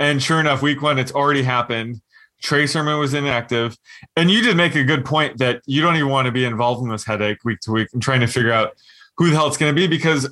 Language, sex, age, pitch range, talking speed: English, male, 20-39, 120-145 Hz, 270 wpm